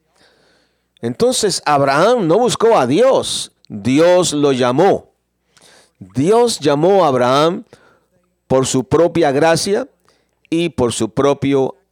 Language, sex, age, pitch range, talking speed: English, male, 50-69, 110-165 Hz, 105 wpm